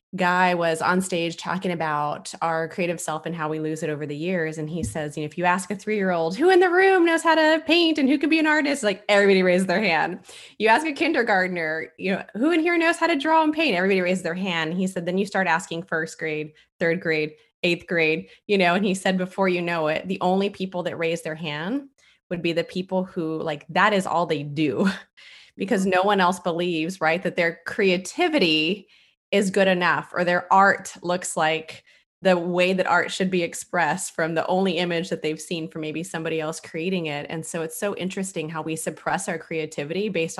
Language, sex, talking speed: English, female, 225 wpm